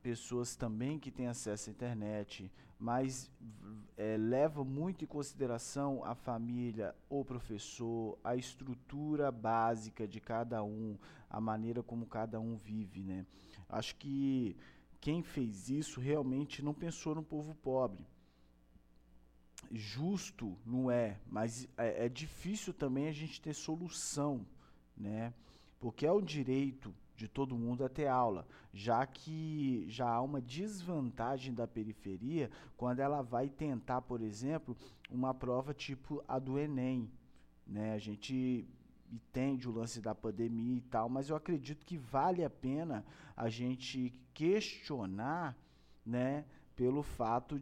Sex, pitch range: male, 110-145 Hz